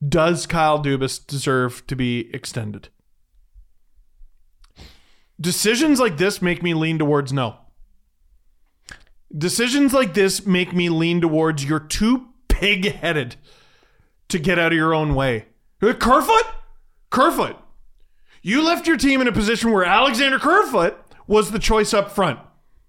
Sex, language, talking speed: male, English, 130 wpm